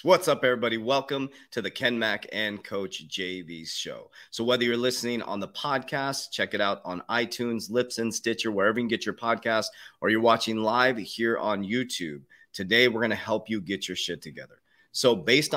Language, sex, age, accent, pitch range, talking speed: English, male, 30-49, American, 100-125 Hz, 195 wpm